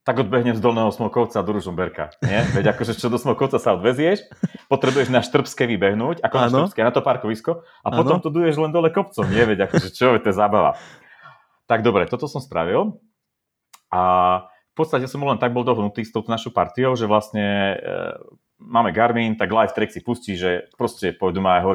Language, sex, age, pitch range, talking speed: Slovak, male, 30-49, 95-125 Hz, 200 wpm